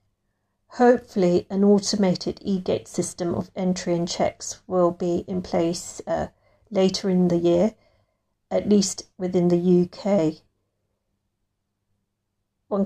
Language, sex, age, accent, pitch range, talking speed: English, female, 40-59, British, 165-195 Hz, 110 wpm